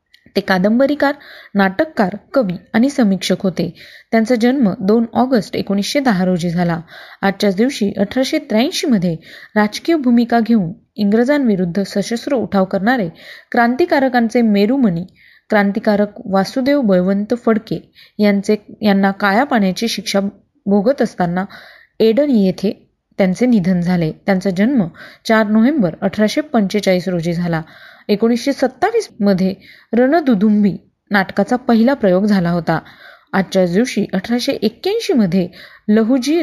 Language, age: Marathi, 20-39